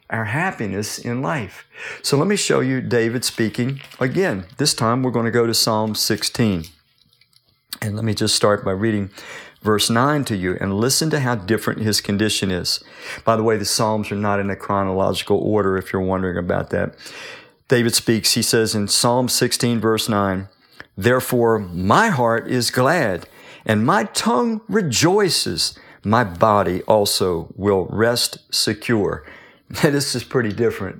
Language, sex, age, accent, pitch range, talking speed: English, male, 50-69, American, 100-130 Hz, 165 wpm